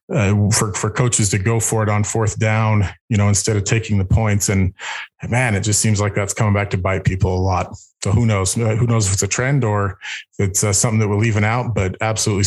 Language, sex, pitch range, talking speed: English, male, 100-120 Hz, 245 wpm